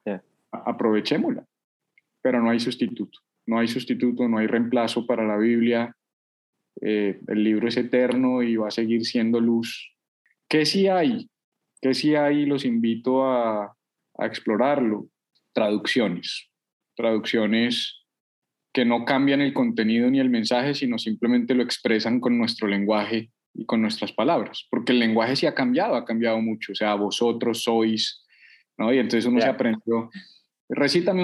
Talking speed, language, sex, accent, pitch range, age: 150 wpm, Spanish, male, Colombian, 115-155 Hz, 20-39